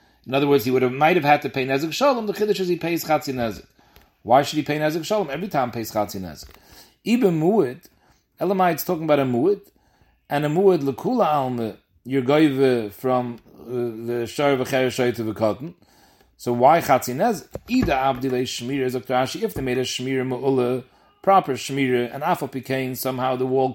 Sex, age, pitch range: male, 40-59, 125-155 Hz